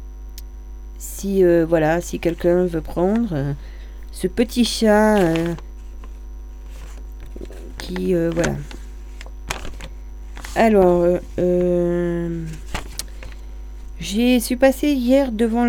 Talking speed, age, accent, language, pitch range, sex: 90 wpm, 40-59, French, French, 160-235 Hz, female